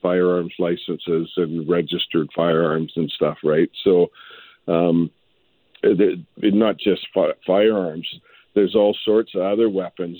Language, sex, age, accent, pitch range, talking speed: English, male, 50-69, American, 90-105 Hz, 110 wpm